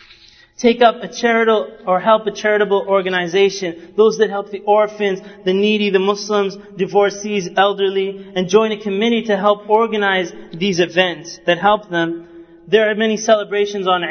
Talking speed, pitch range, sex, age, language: 155 wpm, 180-205 Hz, male, 30-49, English